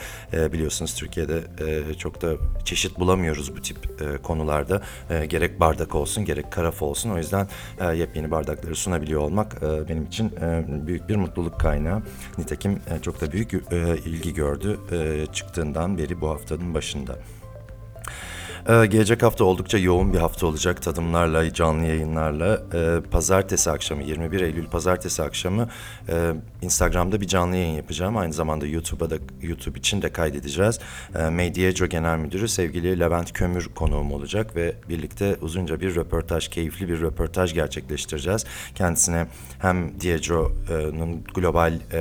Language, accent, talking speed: Turkish, native, 135 wpm